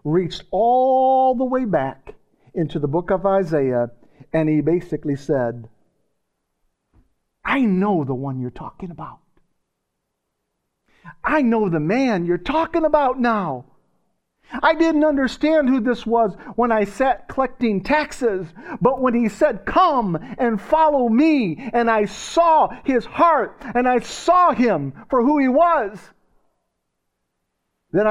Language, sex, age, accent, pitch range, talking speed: English, male, 50-69, American, 160-255 Hz, 130 wpm